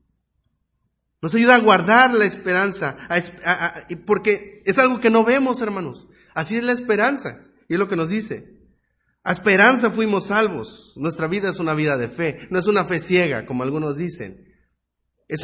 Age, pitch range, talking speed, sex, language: 40-59, 115-195 Hz, 165 wpm, male, Spanish